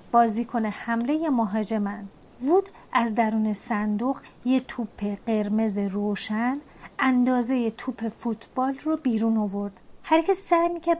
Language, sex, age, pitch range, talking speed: Persian, female, 30-49, 225-280 Hz, 115 wpm